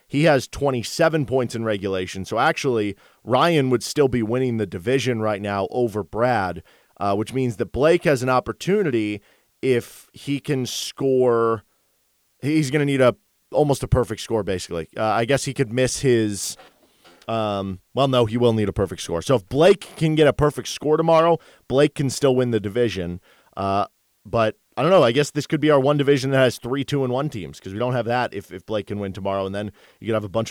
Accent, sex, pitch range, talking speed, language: American, male, 105-135 Hz, 215 wpm, English